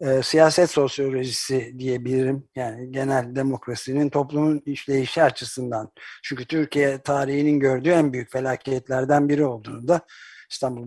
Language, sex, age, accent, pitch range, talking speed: Turkish, male, 60-79, native, 130-155 Hz, 110 wpm